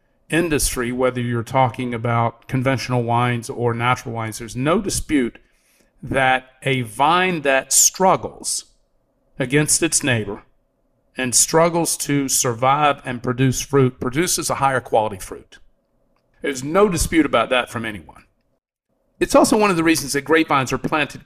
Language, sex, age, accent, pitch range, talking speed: English, male, 50-69, American, 115-140 Hz, 140 wpm